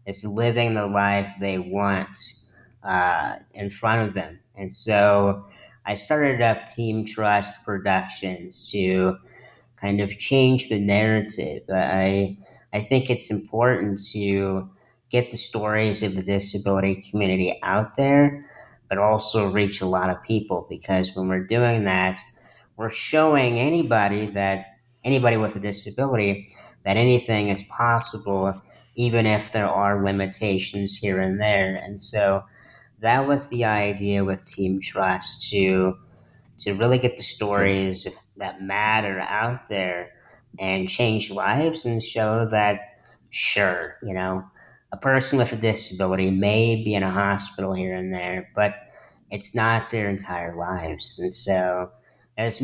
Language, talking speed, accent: English, 140 wpm, American